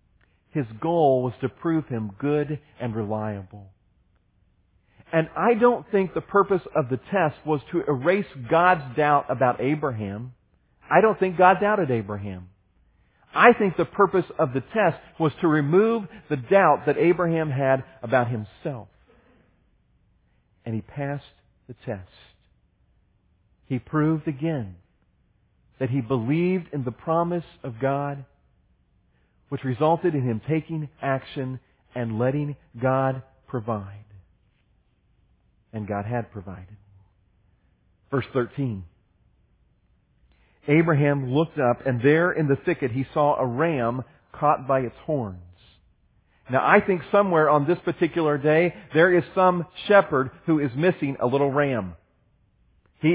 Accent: American